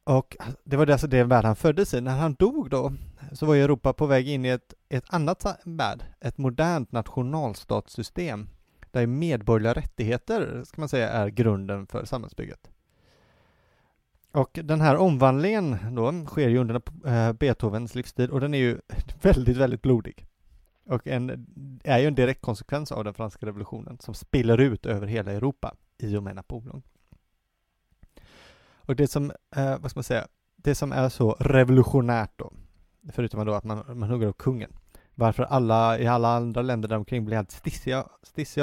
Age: 30-49